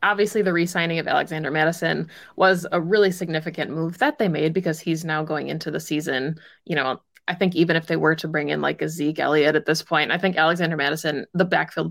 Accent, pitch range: American, 160-190 Hz